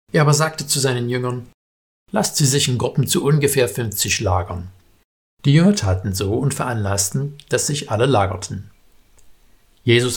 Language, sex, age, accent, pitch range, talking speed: German, male, 60-79, German, 100-130 Hz, 155 wpm